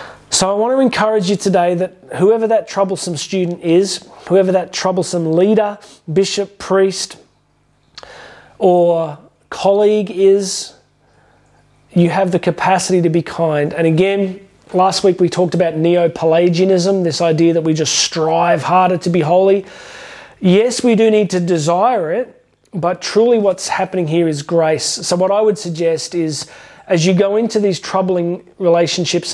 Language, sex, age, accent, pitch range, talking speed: English, male, 30-49, Australian, 170-195 Hz, 150 wpm